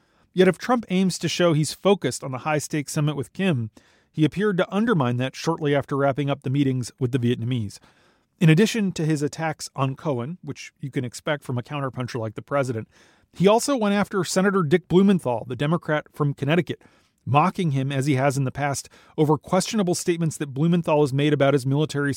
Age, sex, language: 40-59, male, English